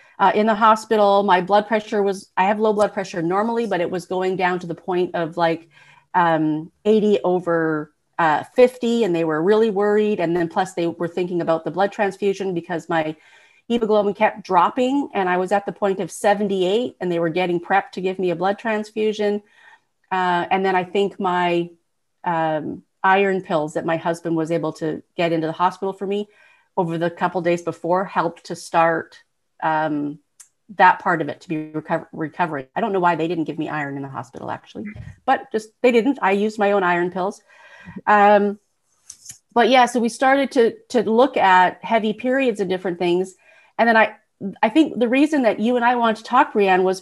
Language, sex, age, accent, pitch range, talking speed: English, female, 40-59, American, 175-215 Hz, 205 wpm